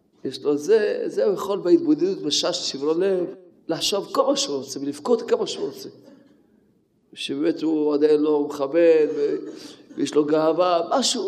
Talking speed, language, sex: 150 wpm, Hebrew, male